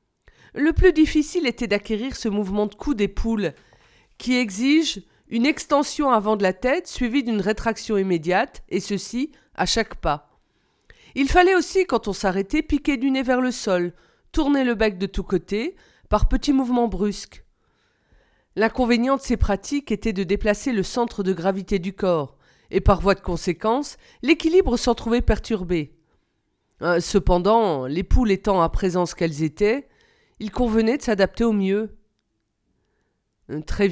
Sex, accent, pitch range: female, French, 190-250 Hz